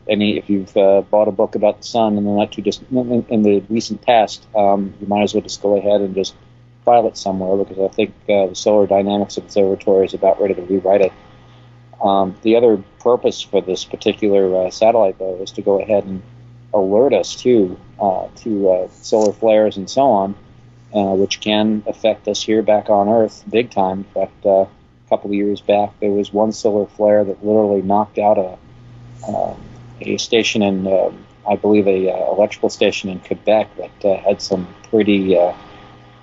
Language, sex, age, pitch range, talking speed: English, male, 40-59, 100-110 Hz, 200 wpm